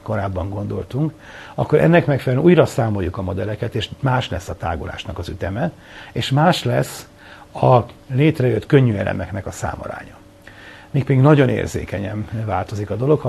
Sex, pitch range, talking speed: male, 100-130 Hz, 150 wpm